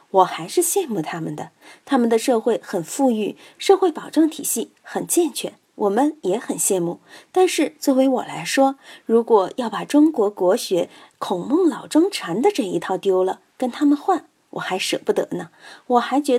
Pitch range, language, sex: 190-300 Hz, Chinese, female